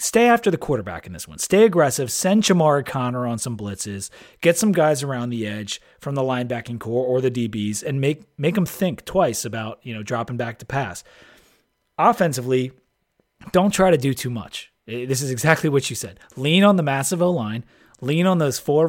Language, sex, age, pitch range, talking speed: English, male, 30-49, 120-170 Hz, 205 wpm